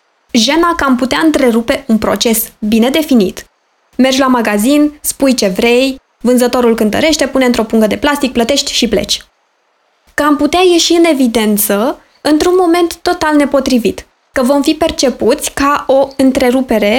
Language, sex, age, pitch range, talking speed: Romanian, female, 20-39, 235-295 Hz, 150 wpm